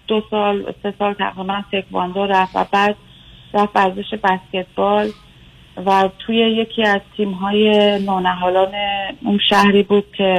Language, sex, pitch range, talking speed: Persian, female, 190-220 Hz, 125 wpm